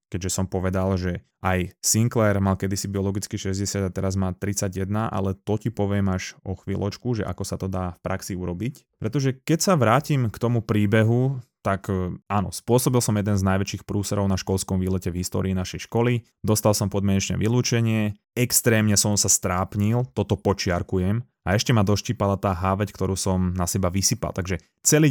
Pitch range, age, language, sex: 95-115 Hz, 20-39, Slovak, male